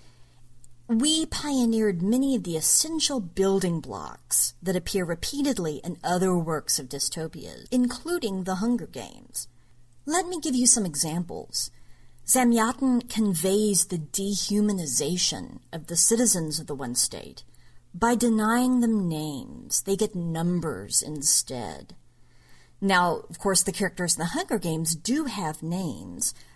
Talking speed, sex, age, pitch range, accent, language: 130 wpm, female, 40-59, 155-225 Hz, American, English